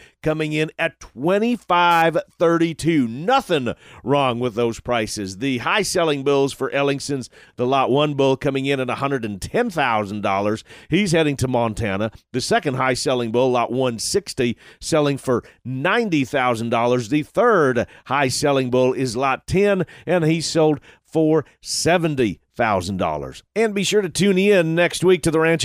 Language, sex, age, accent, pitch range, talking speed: English, male, 40-59, American, 125-170 Hz, 150 wpm